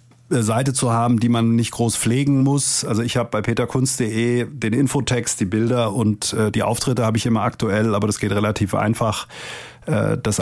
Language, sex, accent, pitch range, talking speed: German, male, German, 110-130 Hz, 190 wpm